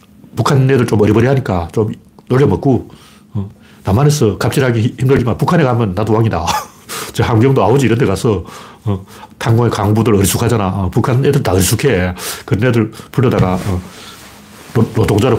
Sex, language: male, Korean